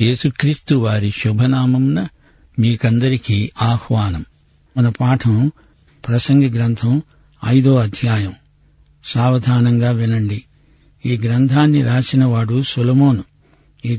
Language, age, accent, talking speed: Telugu, 60-79, native, 75 wpm